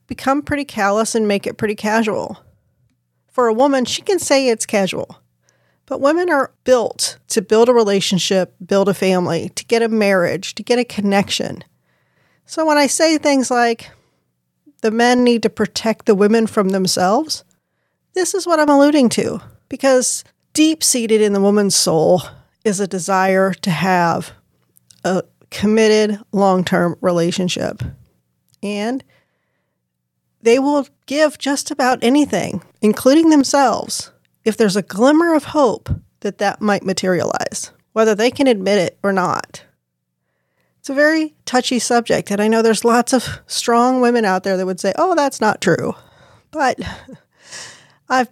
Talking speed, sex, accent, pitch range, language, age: 150 wpm, female, American, 190-255 Hz, English, 40-59